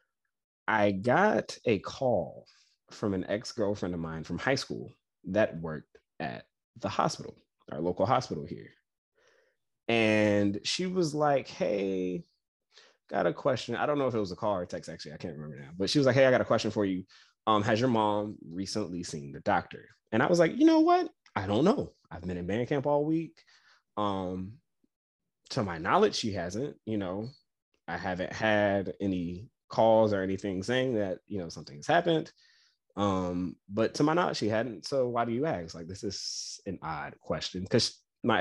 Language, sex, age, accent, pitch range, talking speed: English, male, 20-39, American, 90-120 Hz, 190 wpm